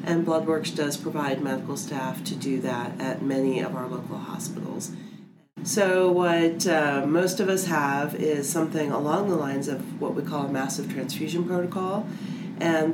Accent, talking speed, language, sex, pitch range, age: American, 165 wpm, English, female, 150-190 Hz, 40-59